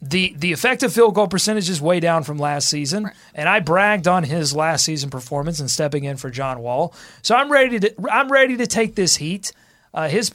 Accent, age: American, 30-49